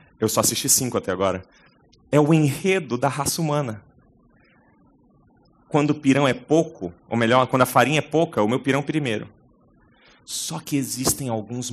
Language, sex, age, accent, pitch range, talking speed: Portuguese, male, 30-49, Brazilian, 105-145 Hz, 165 wpm